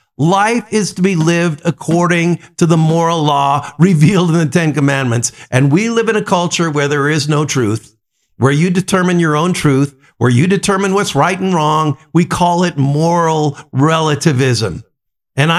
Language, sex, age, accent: English, male, 50-69, American